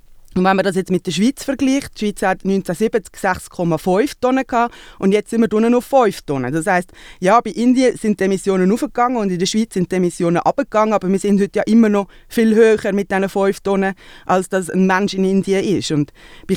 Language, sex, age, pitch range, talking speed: English, female, 20-39, 175-220 Hz, 220 wpm